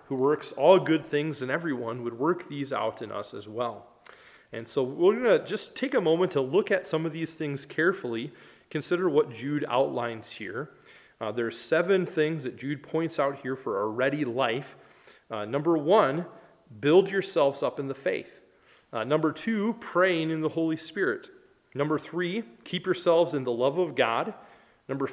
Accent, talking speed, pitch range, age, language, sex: American, 185 wpm, 135-180 Hz, 30-49, English, male